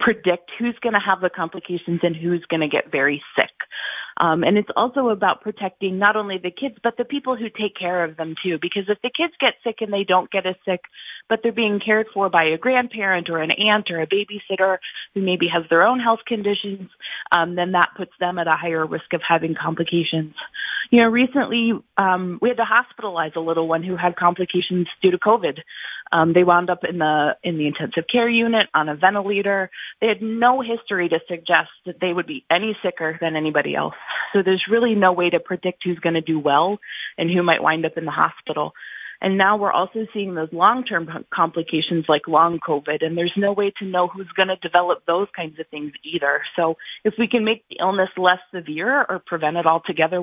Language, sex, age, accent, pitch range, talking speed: English, female, 30-49, American, 165-205 Hz, 215 wpm